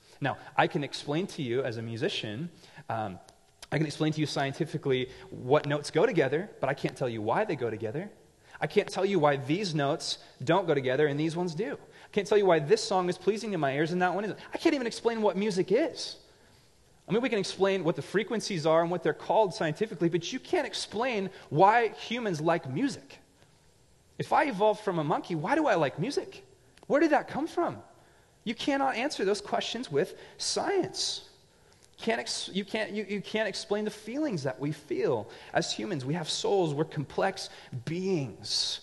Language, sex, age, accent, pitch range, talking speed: English, male, 30-49, American, 140-210 Hz, 205 wpm